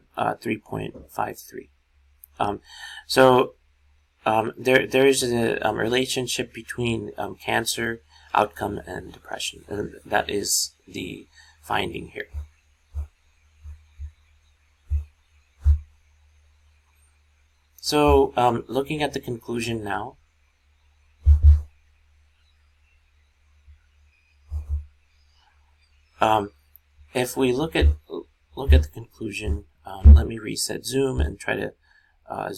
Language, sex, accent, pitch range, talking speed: English, male, American, 75-110 Hz, 90 wpm